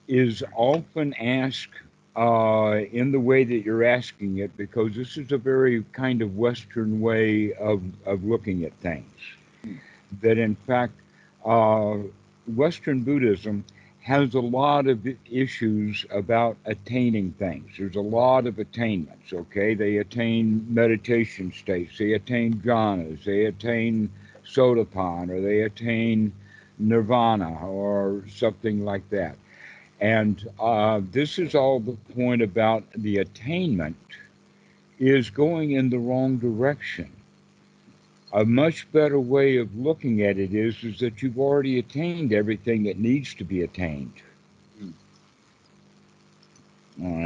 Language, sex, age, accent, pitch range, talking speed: English, male, 60-79, American, 105-125 Hz, 125 wpm